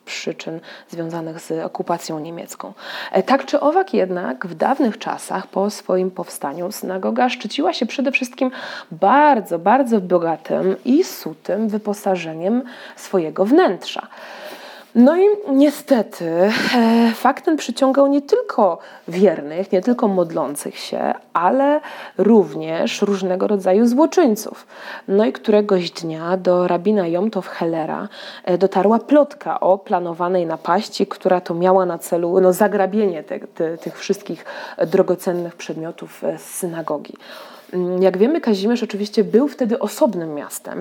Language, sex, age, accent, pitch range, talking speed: Polish, female, 20-39, native, 175-235 Hz, 115 wpm